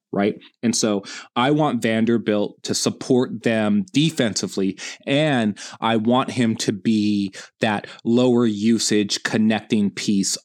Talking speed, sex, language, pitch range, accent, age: 120 wpm, male, English, 115-135 Hz, American, 30-49